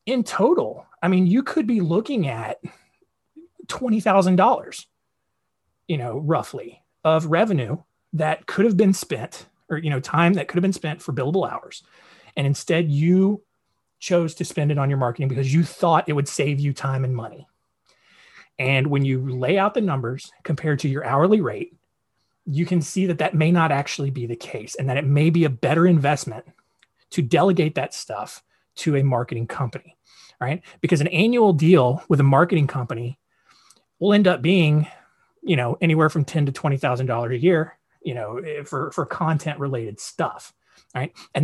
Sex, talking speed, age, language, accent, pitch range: male, 175 wpm, 30-49, English, American, 140-185 Hz